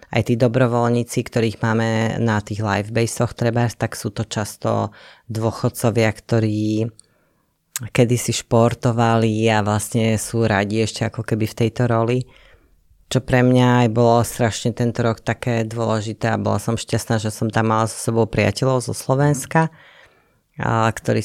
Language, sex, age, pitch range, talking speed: Slovak, female, 20-39, 110-120 Hz, 145 wpm